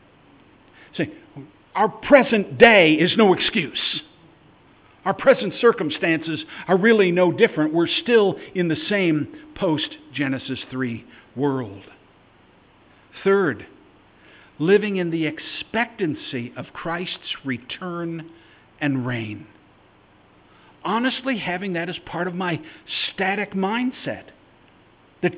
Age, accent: 50-69, American